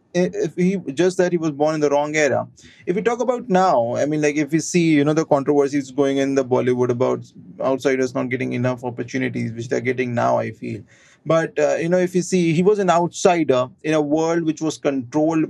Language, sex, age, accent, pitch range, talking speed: English, male, 30-49, Indian, 135-170 Hz, 230 wpm